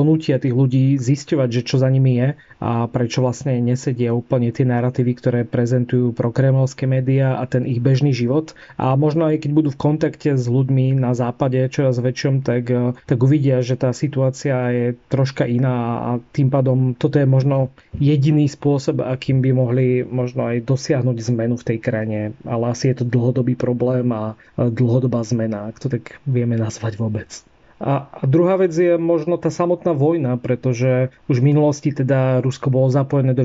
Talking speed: 175 wpm